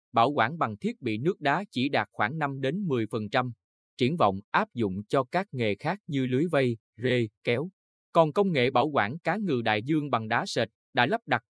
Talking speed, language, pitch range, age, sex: 215 wpm, Vietnamese, 115-150 Hz, 20-39, male